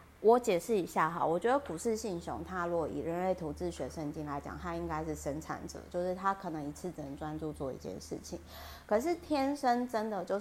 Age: 30-49